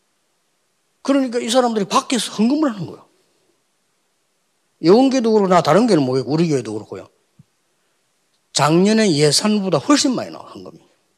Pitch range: 140-200 Hz